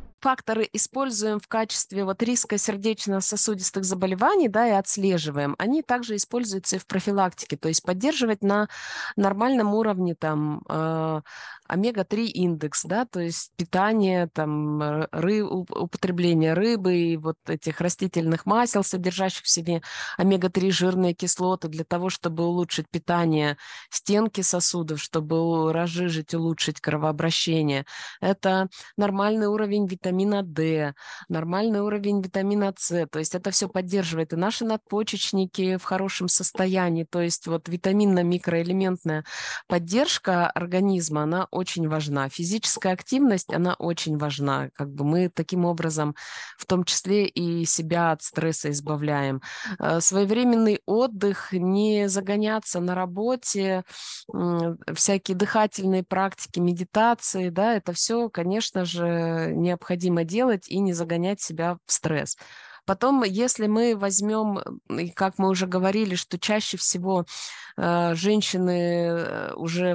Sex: female